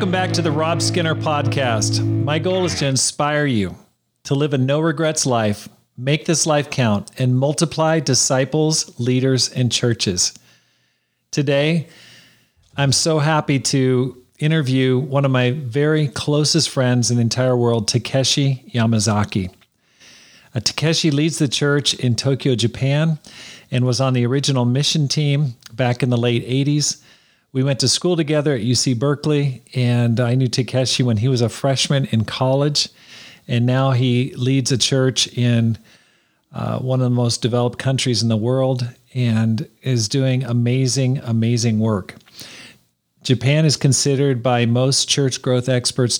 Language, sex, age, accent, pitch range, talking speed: English, male, 40-59, American, 120-140 Hz, 150 wpm